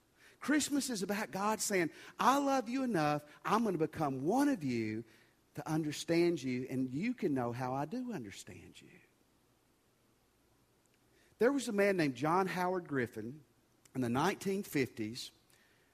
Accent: American